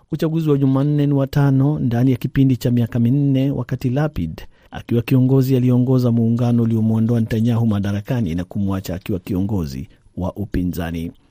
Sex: male